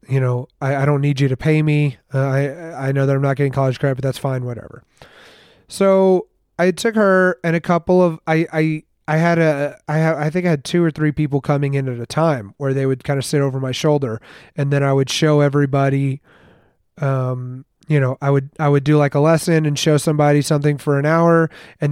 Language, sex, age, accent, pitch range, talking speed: English, male, 30-49, American, 135-165 Hz, 235 wpm